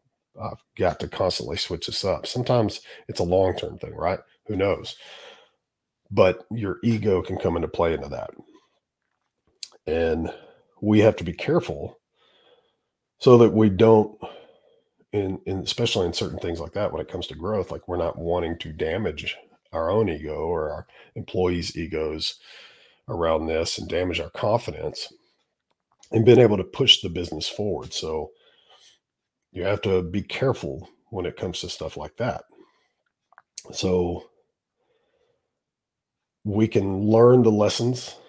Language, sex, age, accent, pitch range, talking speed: English, male, 40-59, American, 90-120 Hz, 145 wpm